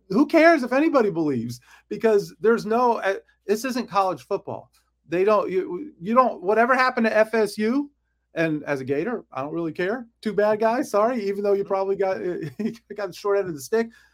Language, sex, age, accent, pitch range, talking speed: English, male, 40-59, American, 140-210 Hz, 205 wpm